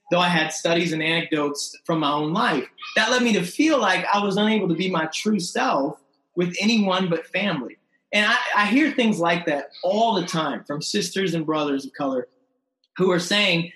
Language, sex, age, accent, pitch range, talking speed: English, male, 30-49, American, 160-220 Hz, 205 wpm